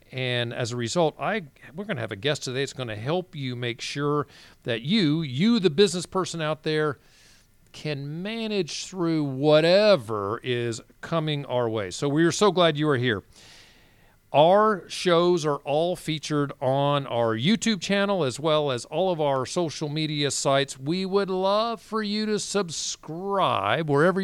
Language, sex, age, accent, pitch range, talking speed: English, male, 40-59, American, 130-180 Hz, 170 wpm